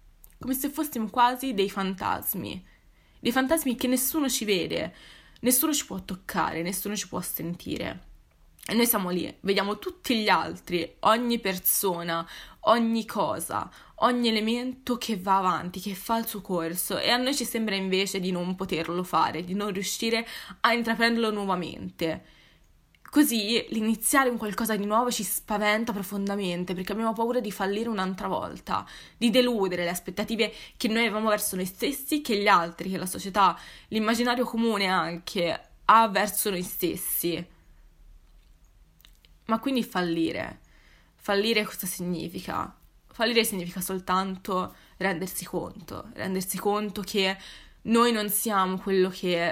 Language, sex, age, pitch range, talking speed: Italian, female, 20-39, 185-230 Hz, 140 wpm